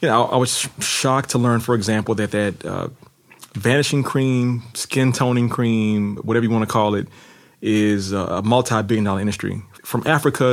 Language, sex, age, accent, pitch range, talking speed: Dutch, male, 30-49, American, 105-120 Hz, 160 wpm